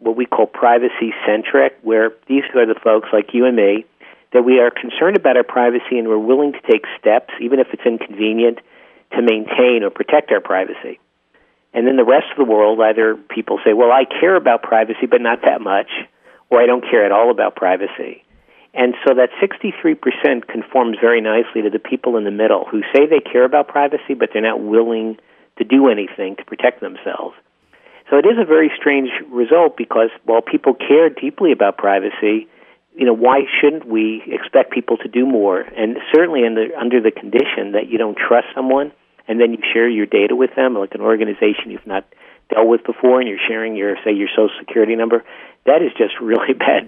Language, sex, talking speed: English, male, 200 wpm